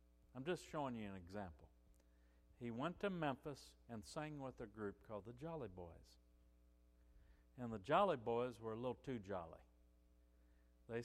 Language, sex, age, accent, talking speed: English, male, 60-79, American, 160 wpm